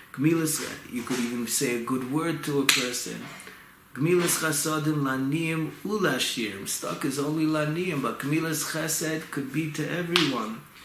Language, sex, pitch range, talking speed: English, male, 130-160 Hz, 140 wpm